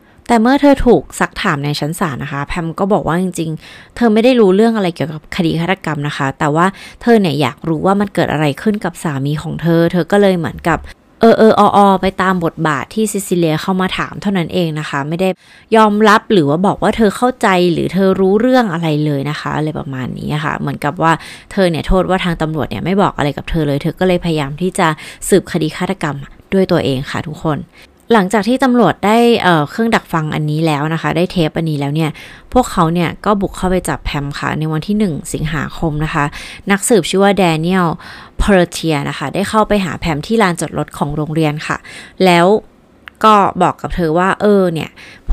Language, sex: Thai, female